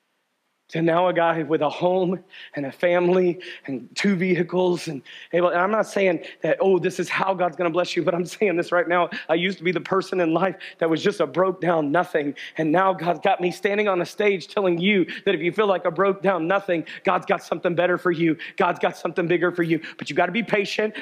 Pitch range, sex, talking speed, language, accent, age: 170-205 Hz, male, 250 wpm, English, American, 40-59